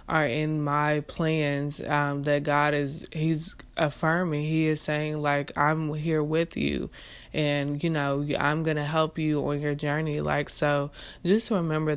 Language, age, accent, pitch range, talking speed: English, 20-39, American, 145-160 Hz, 165 wpm